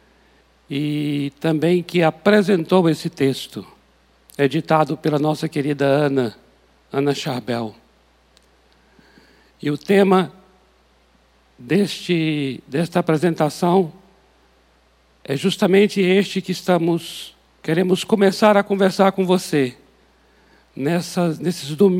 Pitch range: 135-190 Hz